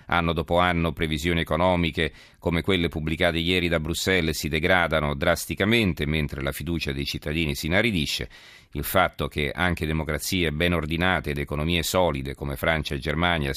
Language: Italian